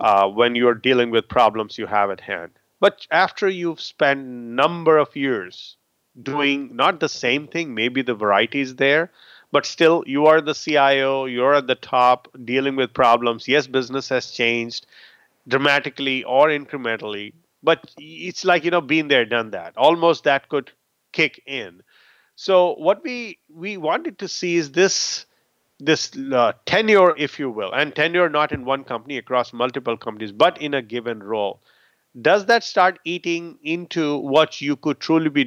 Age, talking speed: 30-49, 170 wpm